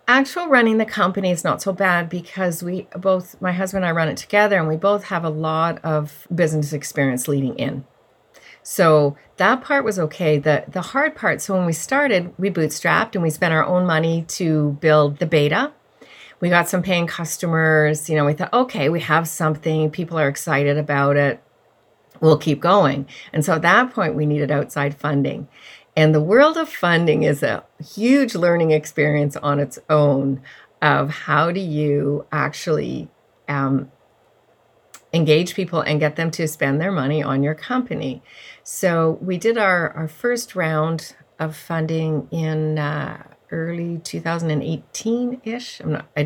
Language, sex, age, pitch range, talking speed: English, female, 40-59, 150-185 Hz, 165 wpm